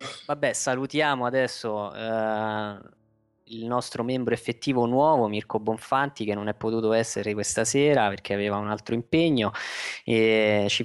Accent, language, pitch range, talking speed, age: native, Italian, 110-135 Hz, 140 wpm, 20-39